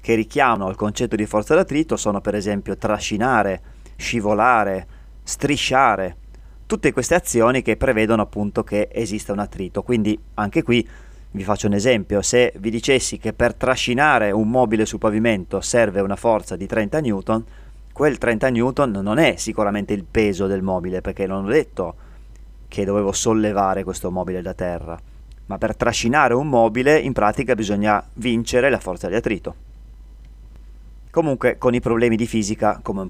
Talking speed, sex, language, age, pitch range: 160 wpm, male, Italian, 30-49, 100-120 Hz